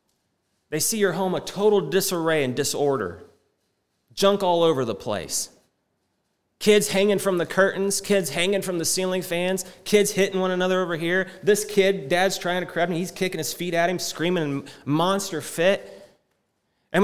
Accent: American